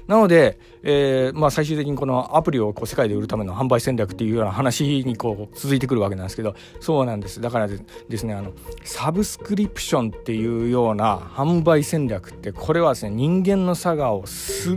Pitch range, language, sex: 105-135 Hz, Japanese, male